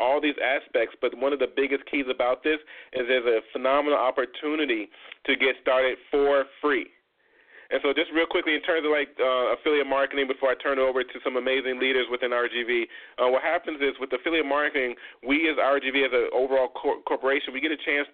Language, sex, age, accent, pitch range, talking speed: English, male, 30-49, American, 125-145 Hz, 210 wpm